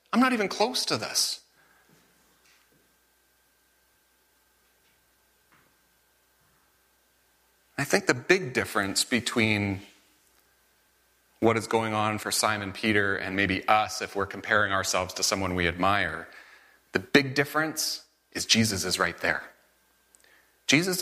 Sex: male